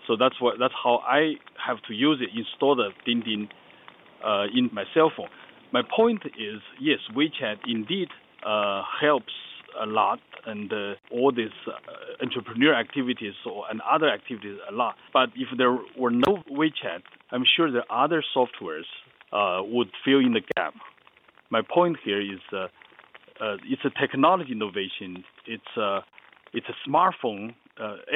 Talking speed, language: 160 wpm, English